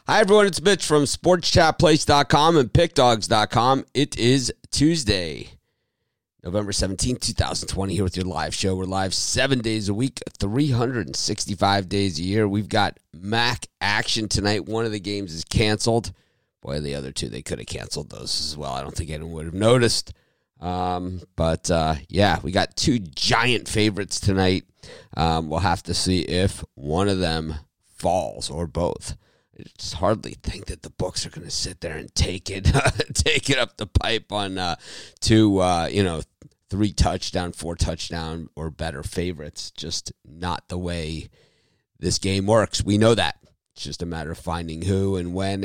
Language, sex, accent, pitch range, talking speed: English, male, American, 85-110 Hz, 170 wpm